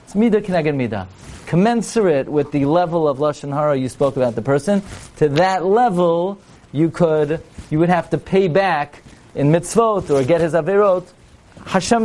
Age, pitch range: 40-59, 130-180 Hz